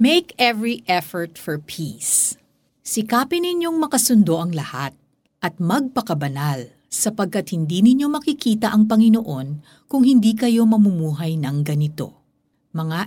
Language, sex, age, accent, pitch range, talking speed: Filipino, female, 50-69, native, 155-230 Hz, 115 wpm